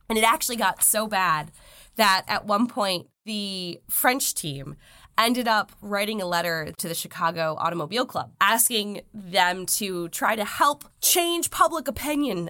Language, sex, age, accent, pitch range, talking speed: English, female, 20-39, American, 175-245 Hz, 155 wpm